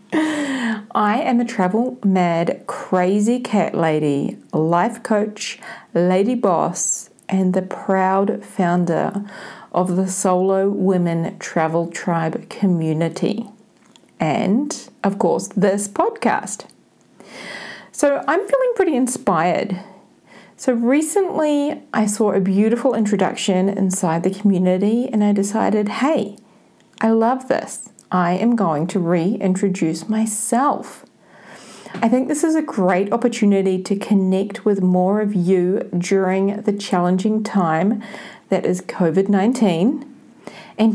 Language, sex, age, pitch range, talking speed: English, female, 40-59, 185-225 Hz, 115 wpm